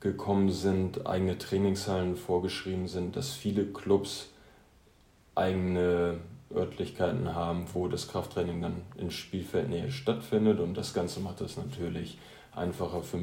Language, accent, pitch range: German, German, 90-95 Hz